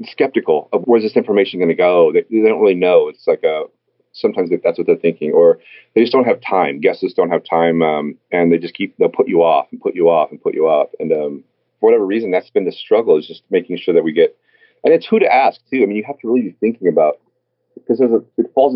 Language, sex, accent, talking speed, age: English, male, American, 265 wpm, 30-49